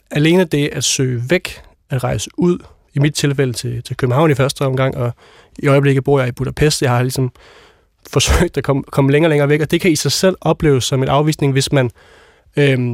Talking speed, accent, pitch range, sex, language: 225 wpm, native, 125-150 Hz, male, Danish